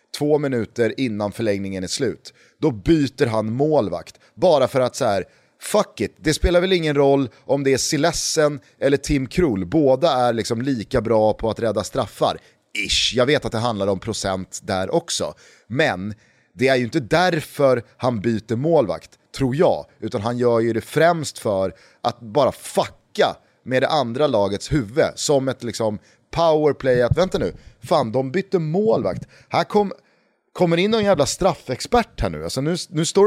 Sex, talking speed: male, 175 wpm